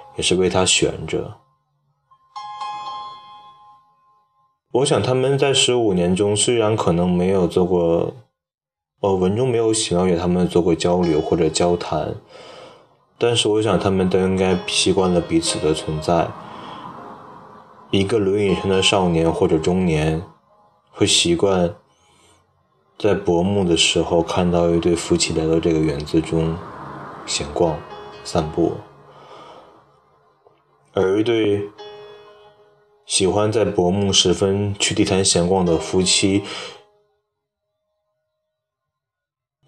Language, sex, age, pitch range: Chinese, male, 20-39, 85-135 Hz